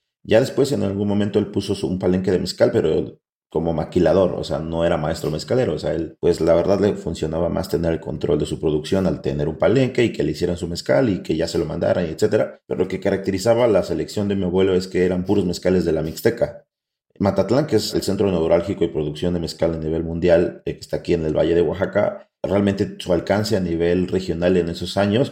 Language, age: Spanish, 40-59